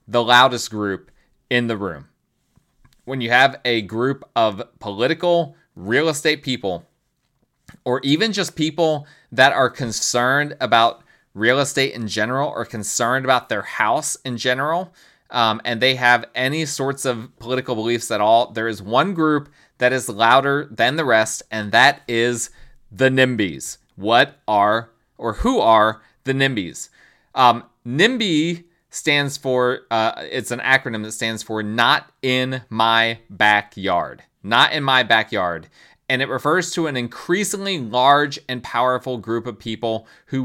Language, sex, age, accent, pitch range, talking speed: English, male, 30-49, American, 115-145 Hz, 150 wpm